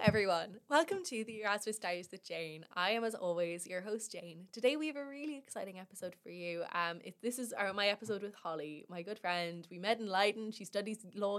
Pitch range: 175-215 Hz